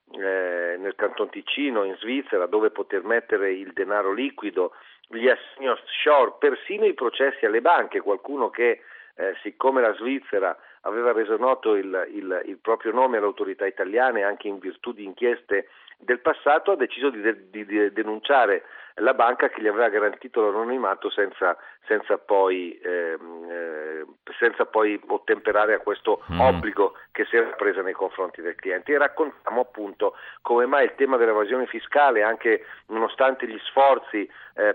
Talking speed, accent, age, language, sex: 145 wpm, native, 50-69, Italian, male